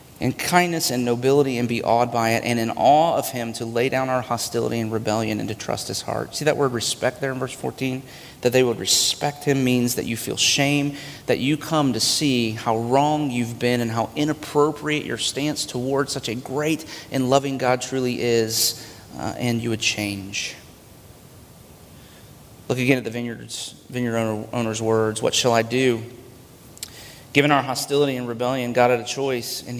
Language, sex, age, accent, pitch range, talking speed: English, male, 30-49, American, 120-145 Hz, 190 wpm